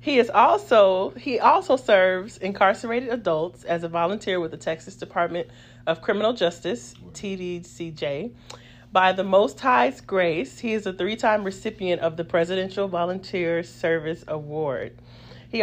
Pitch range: 150-195 Hz